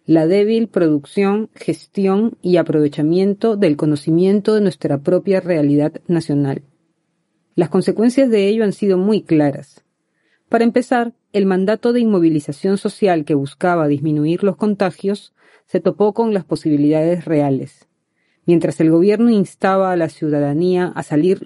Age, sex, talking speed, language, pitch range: 30-49, female, 135 wpm, Spanish, 160-205 Hz